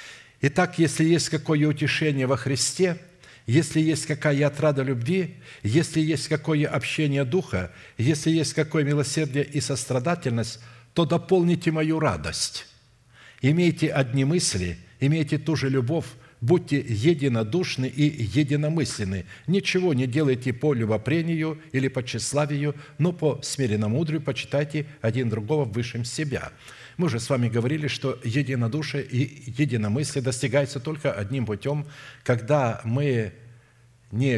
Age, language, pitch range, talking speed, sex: 60-79, Russian, 120-150 Hz, 125 wpm, male